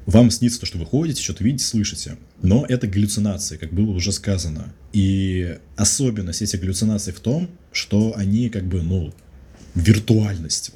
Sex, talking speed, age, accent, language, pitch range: male, 155 wpm, 20-39, native, Russian, 85-110 Hz